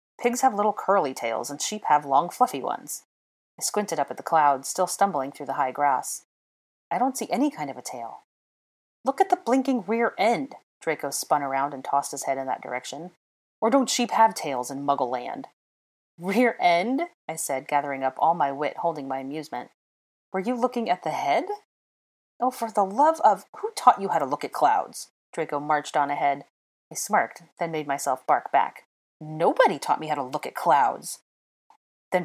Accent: American